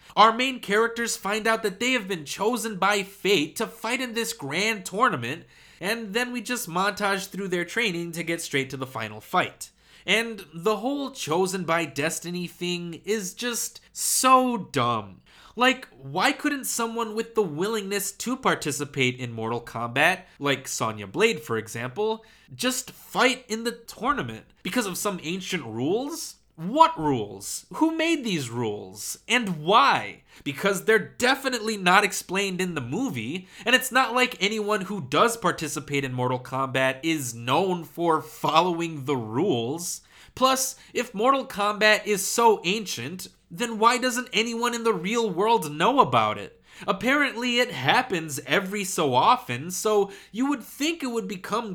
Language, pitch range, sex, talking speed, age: English, 160-230 Hz, male, 155 wpm, 20-39